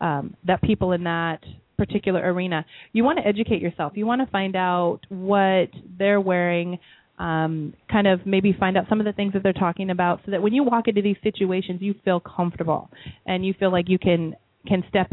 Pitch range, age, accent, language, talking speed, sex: 175-200 Hz, 30-49, American, English, 210 wpm, female